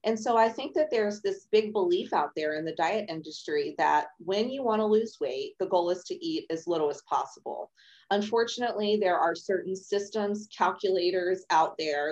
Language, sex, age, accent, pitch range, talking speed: English, female, 30-49, American, 170-240 Hz, 190 wpm